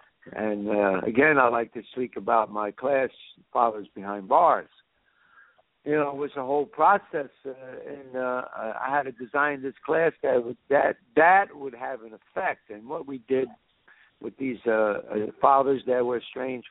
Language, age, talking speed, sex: English, 60-79, 170 wpm, male